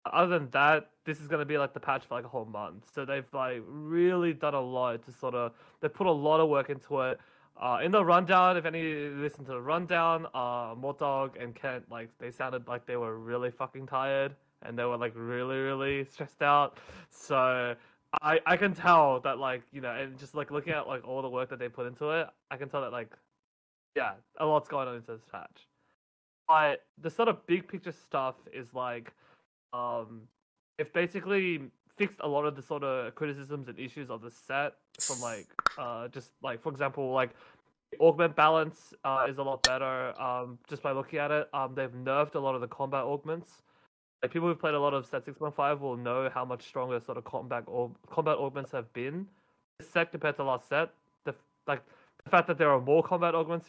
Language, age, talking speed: English, 20-39, 220 wpm